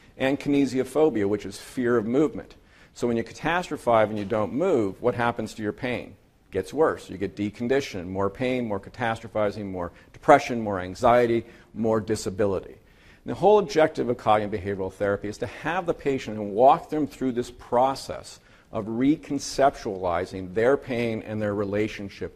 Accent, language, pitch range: American, English, 100-125 Hz